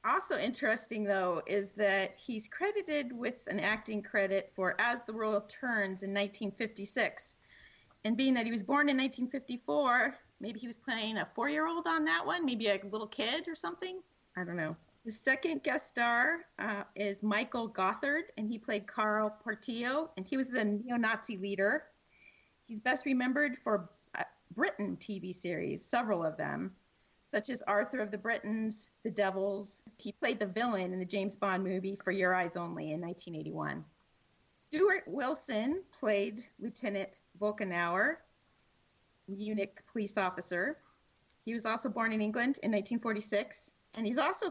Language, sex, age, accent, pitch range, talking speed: English, female, 30-49, American, 200-260 Hz, 155 wpm